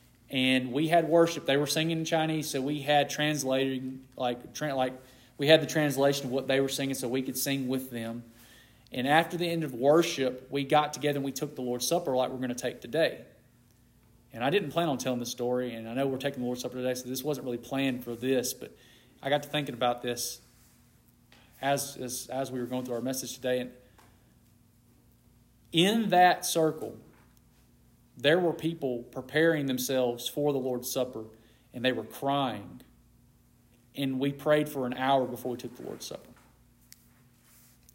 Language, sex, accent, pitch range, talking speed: English, male, American, 125-145 Hz, 195 wpm